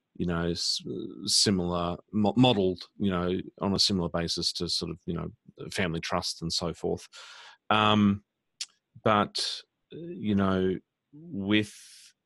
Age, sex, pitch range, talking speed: 40-59, male, 85-100 Hz, 125 wpm